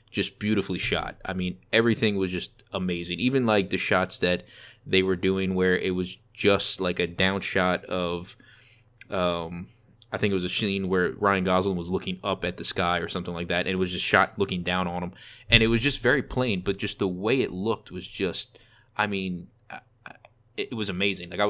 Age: 20-39